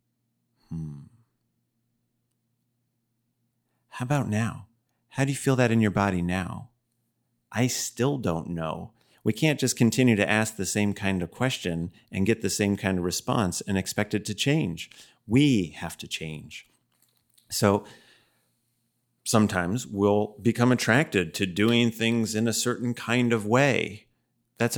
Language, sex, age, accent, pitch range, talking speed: English, male, 30-49, American, 95-120 Hz, 140 wpm